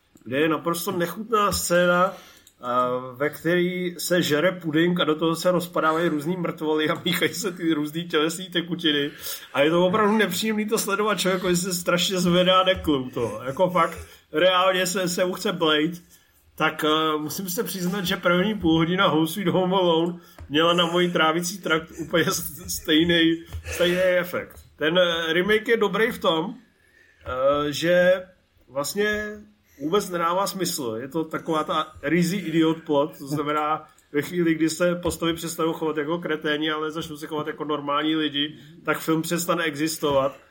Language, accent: Czech, native